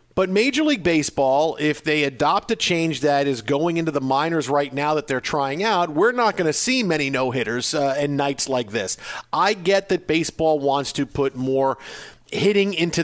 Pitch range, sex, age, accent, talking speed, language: 140-180 Hz, male, 40-59, American, 200 wpm, English